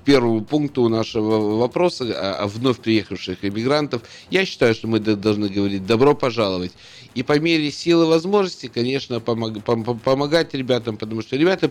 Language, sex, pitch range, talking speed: Russian, male, 105-140 Hz, 155 wpm